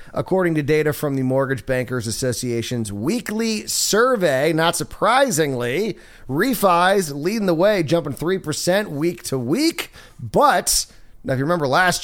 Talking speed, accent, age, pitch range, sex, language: 135 wpm, American, 30-49, 125-170 Hz, male, English